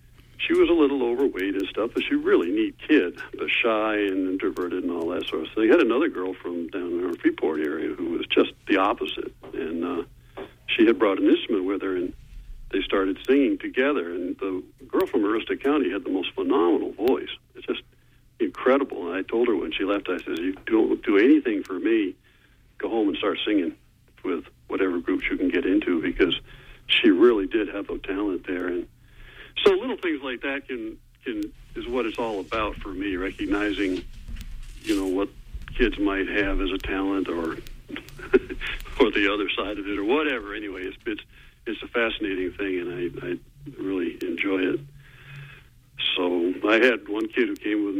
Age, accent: 60-79, American